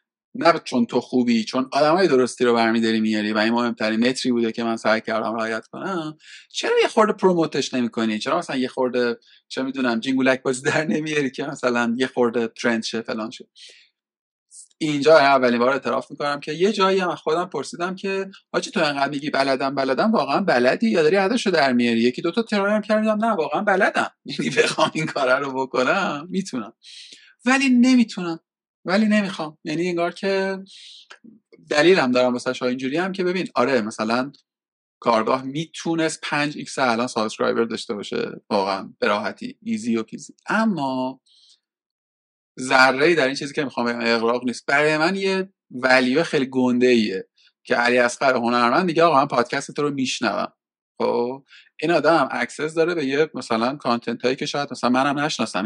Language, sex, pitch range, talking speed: Persian, male, 120-170 Hz, 165 wpm